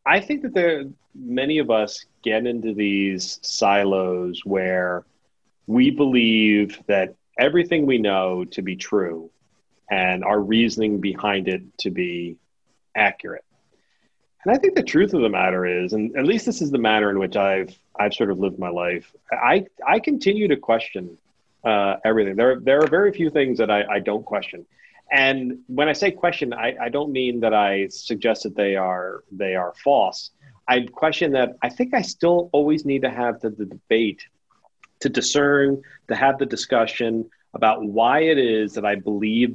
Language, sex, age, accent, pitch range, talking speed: English, male, 30-49, American, 100-145 Hz, 180 wpm